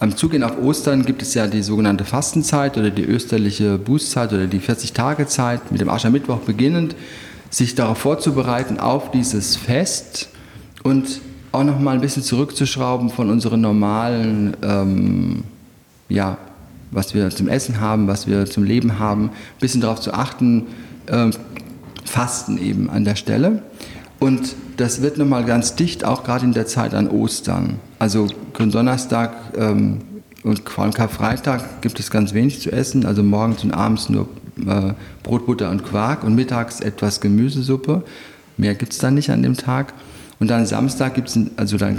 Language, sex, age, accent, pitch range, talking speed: German, male, 40-59, German, 105-130 Hz, 160 wpm